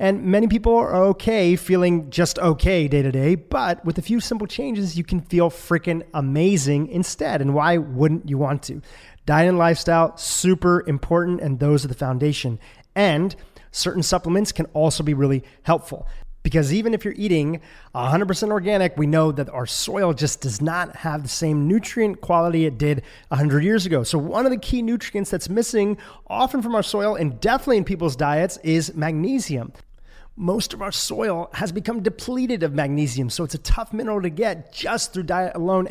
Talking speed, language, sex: 185 wpm, English, male